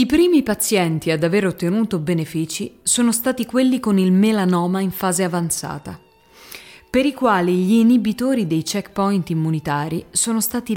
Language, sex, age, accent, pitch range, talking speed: Italian, female, 20-39, native, 165-220 Hz, 145 wpm